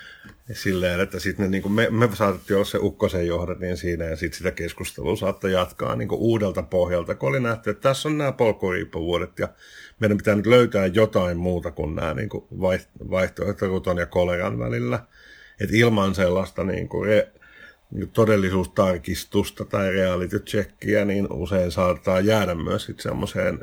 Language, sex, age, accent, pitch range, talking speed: Finnish, male, 50-69, native, 90-110 Hz, 160 wpm